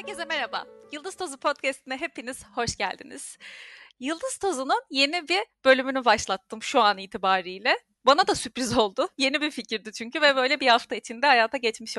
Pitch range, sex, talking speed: 240-320 Hz, female, 160 wpm